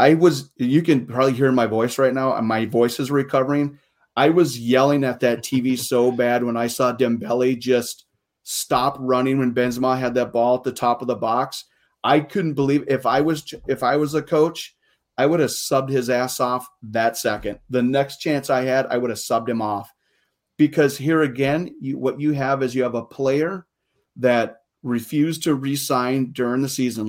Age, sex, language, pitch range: 30-49, male, English, 120-145 Hz